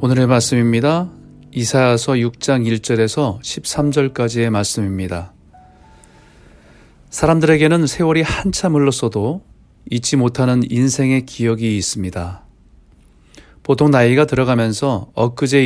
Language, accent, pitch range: Korean, native, 100-140 Hz